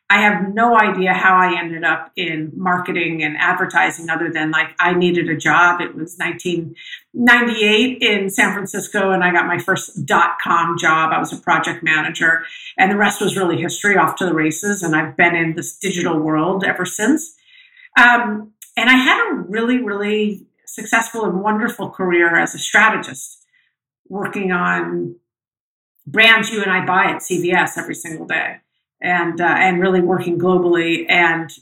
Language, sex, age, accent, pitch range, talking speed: English, female, 50-69, American, 170-225 Hz, 170 wpm